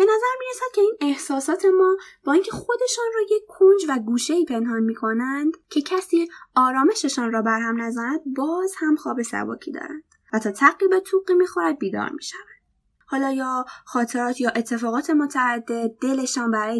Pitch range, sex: 240-345 Hz, female